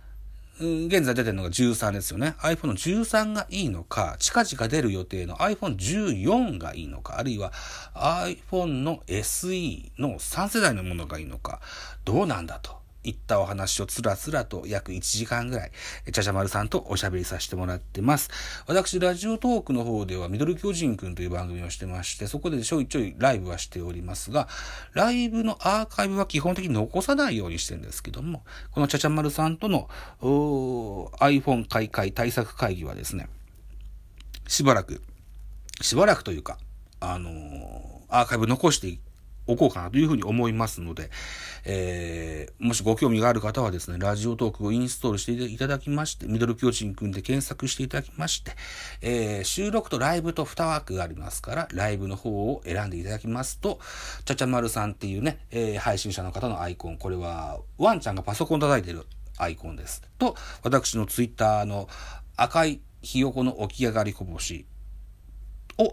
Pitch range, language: 90-140 Hz, Japanese